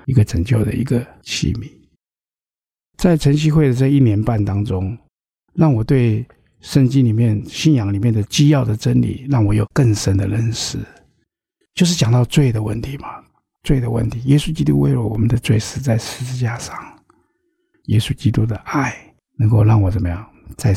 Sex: male